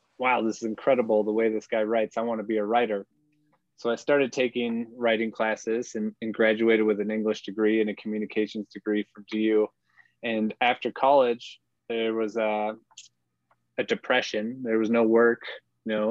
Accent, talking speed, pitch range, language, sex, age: American, 175 wpm, 110-120 Hz, English, male, 20-39